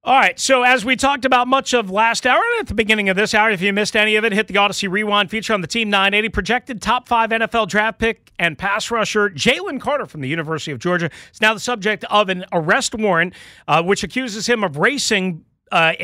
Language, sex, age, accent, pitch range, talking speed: English, male, 40-59, American, 165-215 Hz, 240 wpm